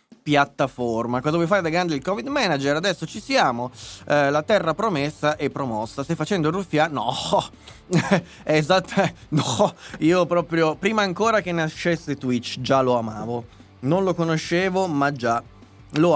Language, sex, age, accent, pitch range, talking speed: Italian, male, 20-39, native, 125-175 Hz, 150 wpm